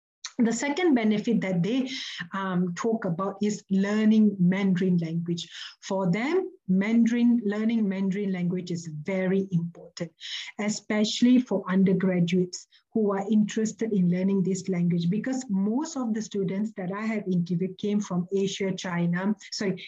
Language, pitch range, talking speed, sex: English, 185-230 Hz, 135 wpm, female